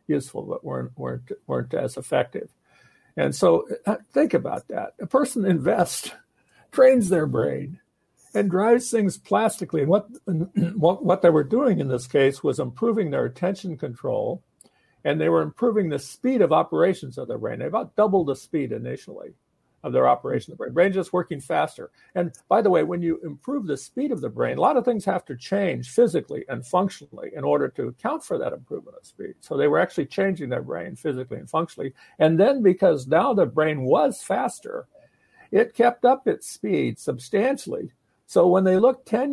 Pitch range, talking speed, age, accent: 160-250 Hz, 190 wpm, 60-79, American